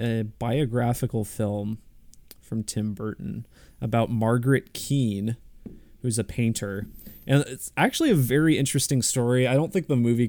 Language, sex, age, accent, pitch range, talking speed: English, male, 20-39, American, 110-130 Hz, 140 wpm